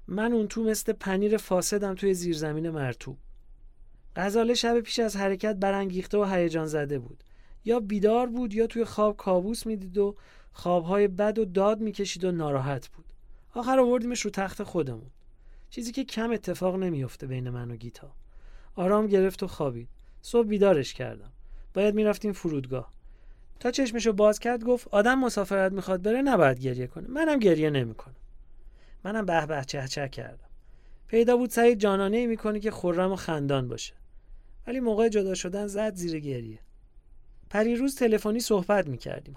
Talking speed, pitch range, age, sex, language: 160 wpm, 145-225 Hz, 40-59, male, English